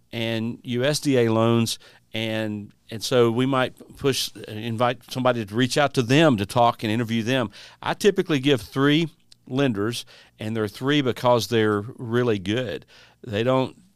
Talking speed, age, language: 150 wpm, 50-69, English